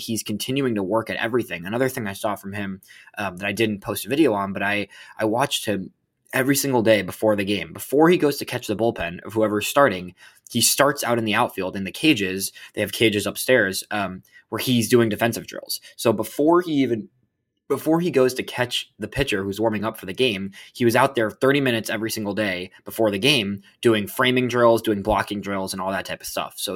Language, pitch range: English, 100-130 Hz